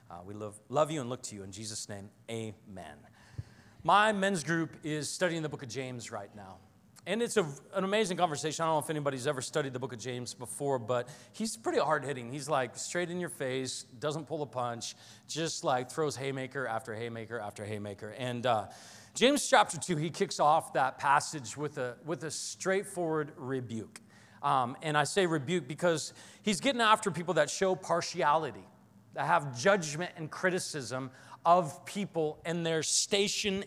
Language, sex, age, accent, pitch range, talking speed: English, male, 40-59, American, 130-185 Hz, 185 wpm